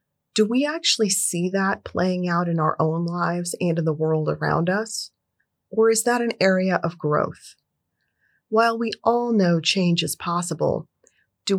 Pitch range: 175-220 Hz